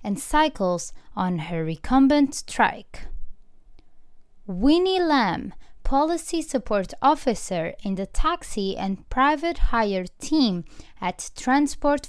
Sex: female